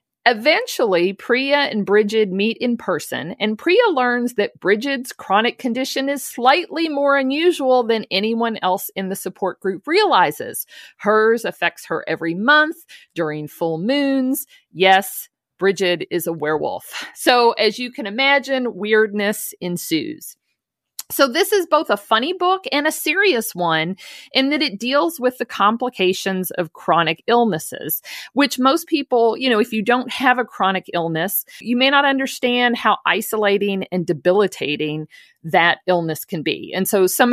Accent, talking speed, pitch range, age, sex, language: American, 150 wpm, 185-265 Hz, 50-69, female, English